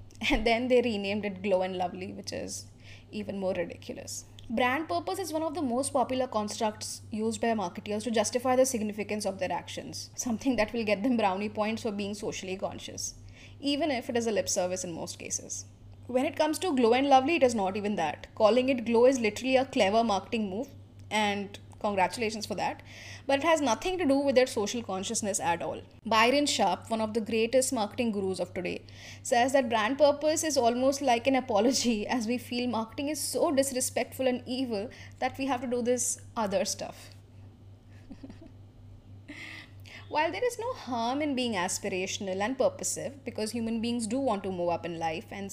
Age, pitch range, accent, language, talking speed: 10-29, 185-260 Hz, Indian, English, 195 wpm